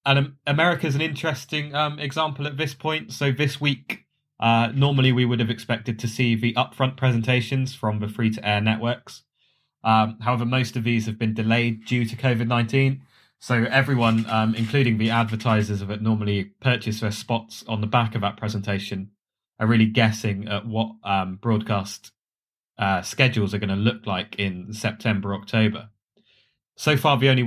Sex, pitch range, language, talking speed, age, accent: male, 110-130 Hz, English, 170 wpm, 20-39, British